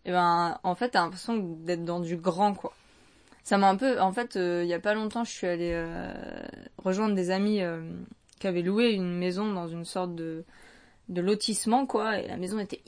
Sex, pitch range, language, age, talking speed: female, 180-225 Hz, French, 20-39, 220 wpm